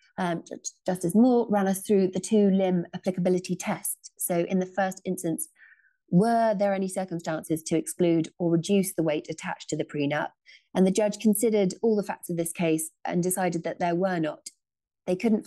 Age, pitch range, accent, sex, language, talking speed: 30-49, 160-190 Hz, British, female, English, 180 wpm